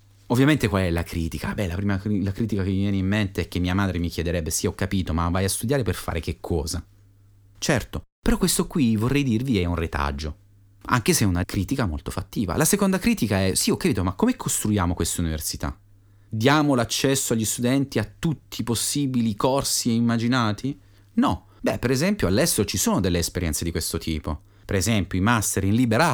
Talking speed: 205 wpm